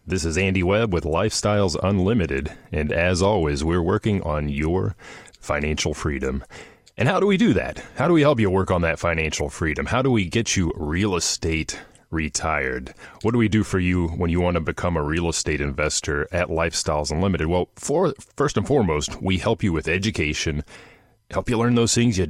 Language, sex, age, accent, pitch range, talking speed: English, male, 30-49, American, 80-105 Hz, 195 wpm